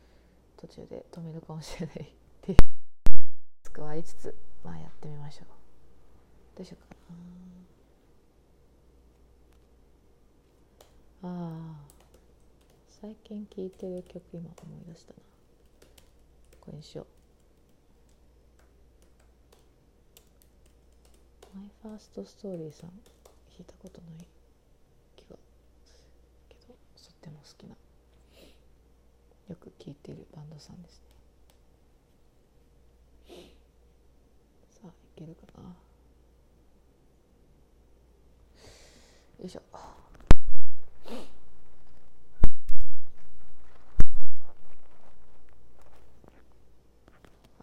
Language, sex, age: Japanese, female, 30-49